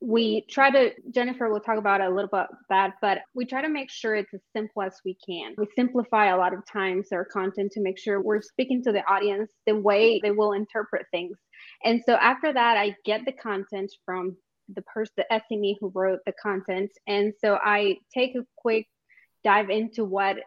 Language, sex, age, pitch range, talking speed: English, female, 20-39, 200-235 Hz, 210 wpm